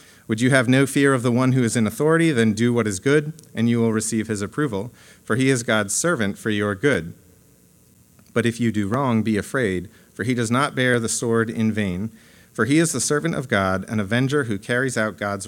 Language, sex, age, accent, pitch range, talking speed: English, male, 40-59, American, 100-125 Hz, 235 wpm